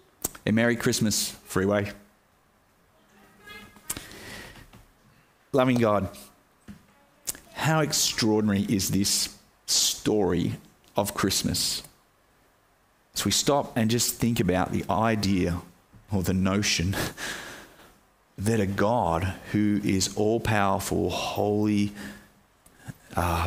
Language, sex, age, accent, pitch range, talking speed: English, male, 30-49, Australian, 95-110 Hz, 85 wpm